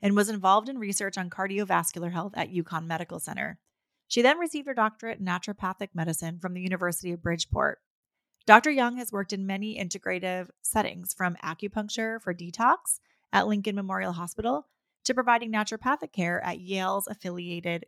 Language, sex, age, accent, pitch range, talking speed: English, female, 30-49, American, 180-235 Hz, 160 wpm